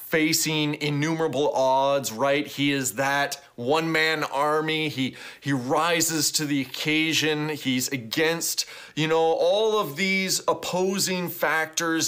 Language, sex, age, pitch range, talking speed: English, male, 30-49, 140-185 Hz, 120 wpm